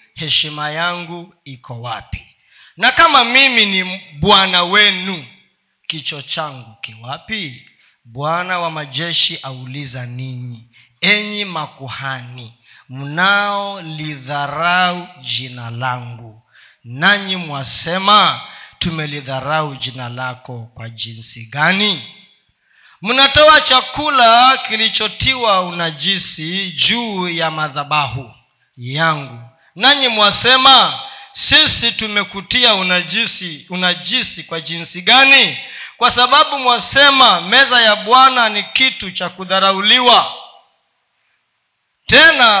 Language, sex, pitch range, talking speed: Swahili, male, 145-225 Hz, 85 wpm